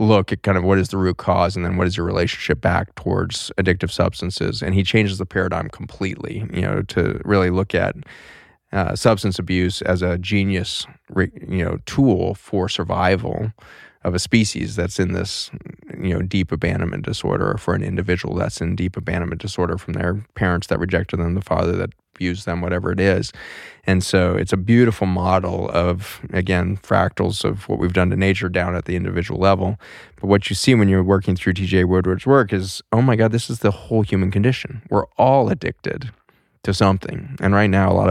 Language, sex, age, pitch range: English, male, 20-39, 90-105 Hz